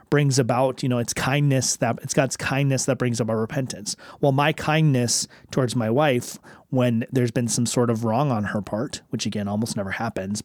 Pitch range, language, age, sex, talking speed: 120-150 Hz, English, 30-49, male, 205 wpm